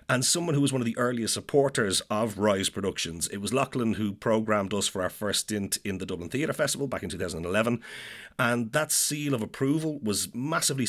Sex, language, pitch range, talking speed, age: male, English, 105-130 Hz, 205 wpm, 30-49